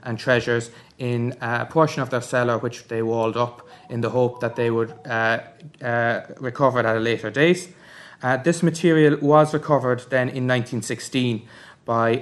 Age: 20-39